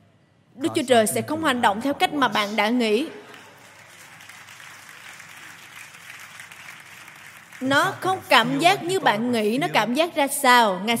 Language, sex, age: Vietnamese, female, 20-39